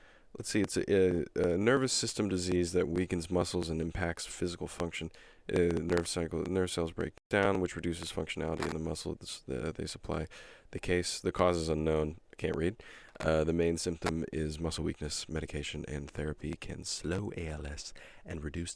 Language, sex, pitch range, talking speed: English, male, 80-95 Hz, 175 wpm